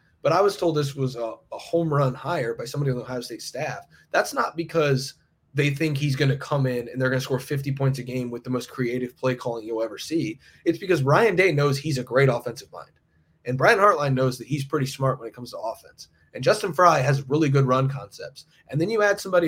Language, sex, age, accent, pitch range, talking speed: English, male, 20-39, American, 130-160 Hz, 255 wpm